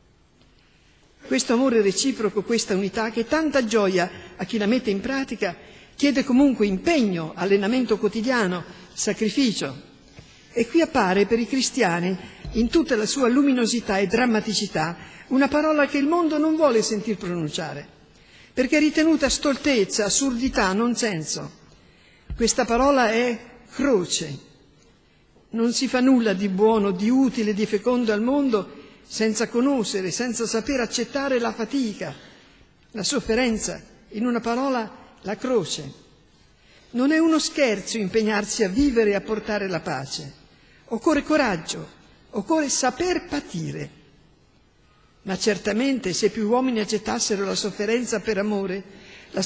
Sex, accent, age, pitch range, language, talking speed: female, native, 50-69, 205-270 Hz, Italian, 130 wpm